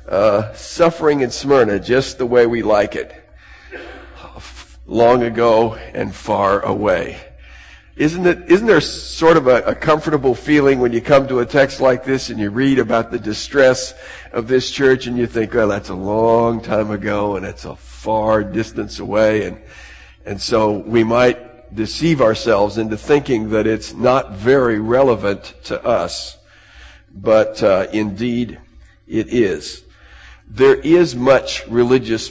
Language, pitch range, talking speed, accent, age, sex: English, 105-130 Hz, 150 wpm, American, 50-69, male